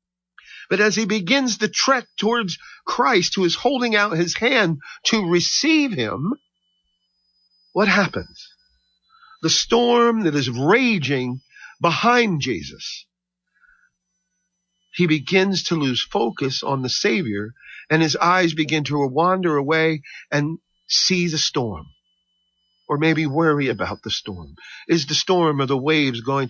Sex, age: male, 50-69